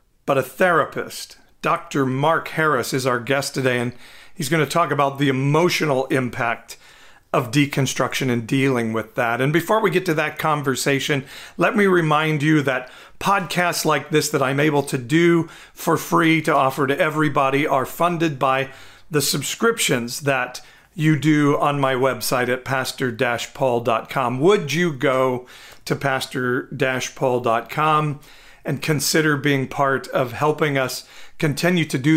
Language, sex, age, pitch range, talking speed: English, male, 40-59, 130-155 Hz, 145 wpm